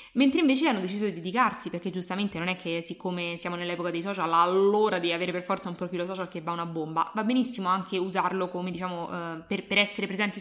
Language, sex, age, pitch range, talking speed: English, female, 20-39, 175-195 Hz, 220 wpm